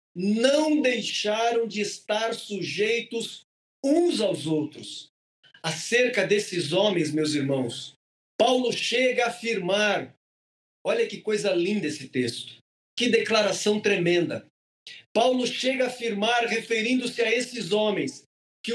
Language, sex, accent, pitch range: Portuguese, male, Brazilian, 165-225 Hz